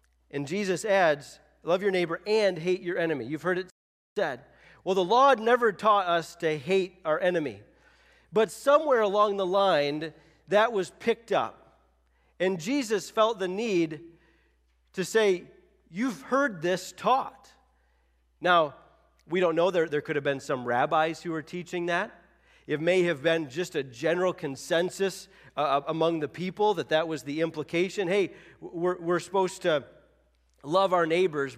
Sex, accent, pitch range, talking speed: male, American, 150-190 Hz, 155 wpm